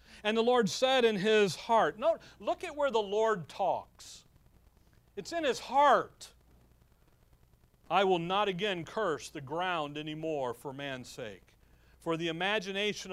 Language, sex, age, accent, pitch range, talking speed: English, male, 40-59, American, 175-240 Hz, 140 wpm